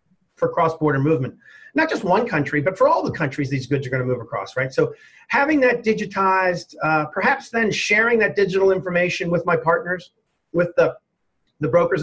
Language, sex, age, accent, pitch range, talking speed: English, male, 40-59, American, 150-200 Hz, 190 wpm